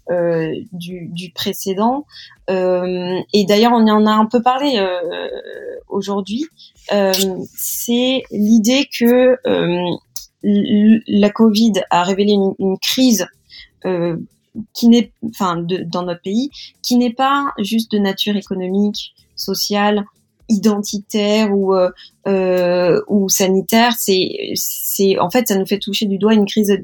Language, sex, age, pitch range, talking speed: French, female, 20-39, 180-225 Hz, 140 wpm